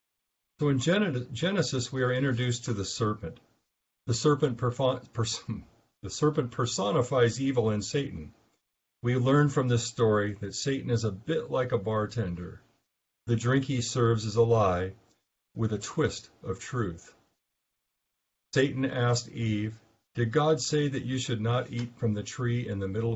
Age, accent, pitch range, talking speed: 50-69, American, 110-130 Hz, 150 wpm